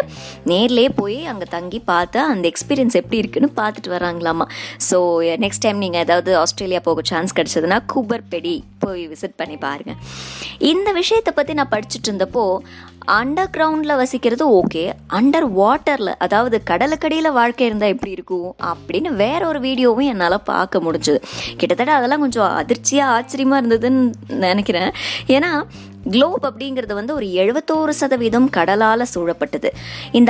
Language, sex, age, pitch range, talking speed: Tamil, male, 20-39, 185-270 Hz, 50 wpm